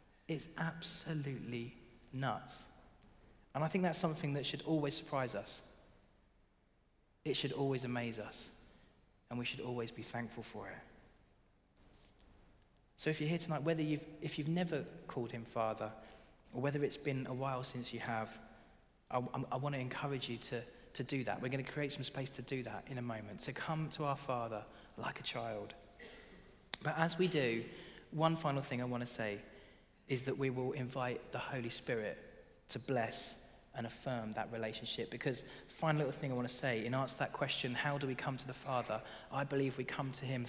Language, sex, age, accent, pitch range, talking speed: English, male, 30-49, British, 115-145 Hz, 195 wpm